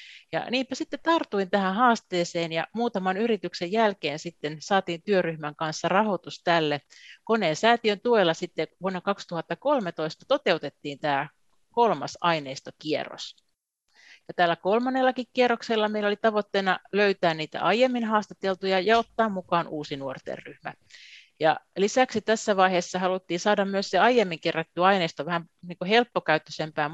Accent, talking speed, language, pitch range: native, 125 wpm, Finnish, 155-210 Hz